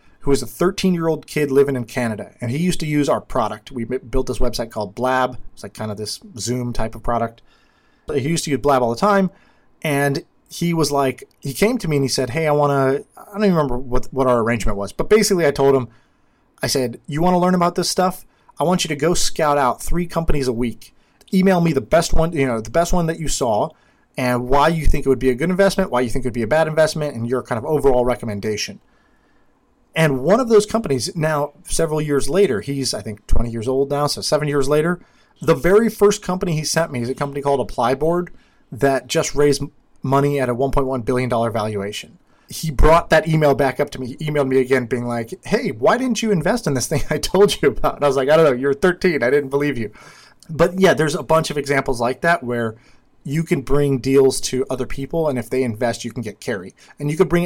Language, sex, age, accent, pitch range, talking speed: English, male, 30-49, American, 125-165 Hz, 245 wpm